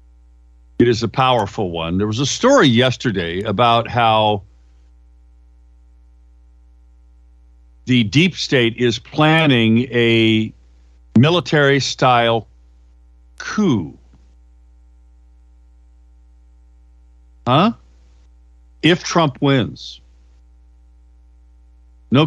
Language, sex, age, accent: English, male, 50-69, American